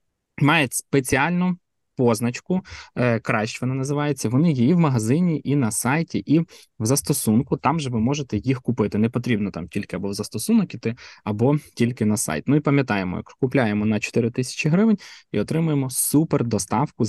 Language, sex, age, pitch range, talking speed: Ukrainian, male, 20-39, 110-145 Hz, 165 wpm